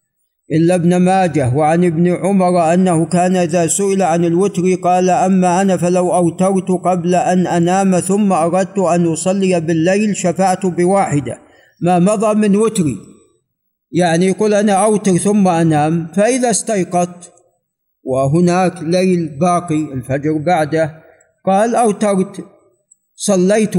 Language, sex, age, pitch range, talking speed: Arabic, male, 50-69, 165-200 Hz, 120 wpm